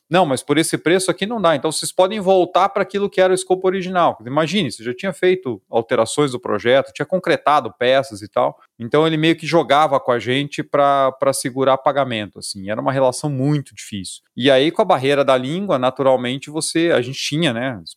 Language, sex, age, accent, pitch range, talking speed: Portuguese, male, 30-49, Brazilian, 120-155 Hz, 210 wpm